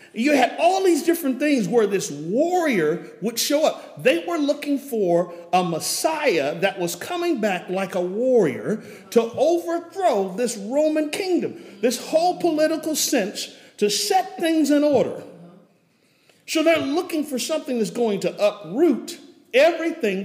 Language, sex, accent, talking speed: English, male, American, 145 wpm